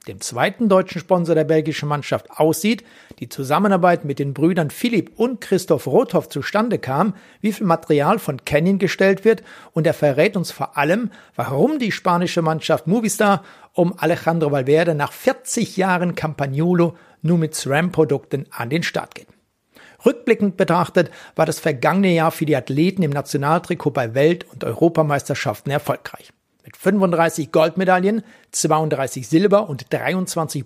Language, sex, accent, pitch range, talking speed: German, male, German, 150-190 Hz, 145 wpm